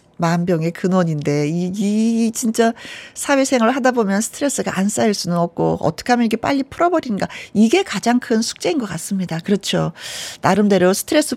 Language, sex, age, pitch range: Korean, female, 40-59, 175-240 Hz